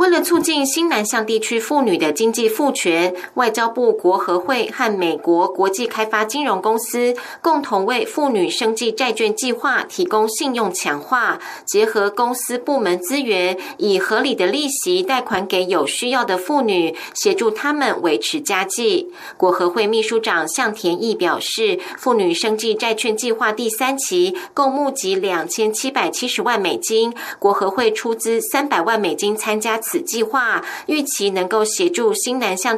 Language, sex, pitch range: German, female, 210-280 Hz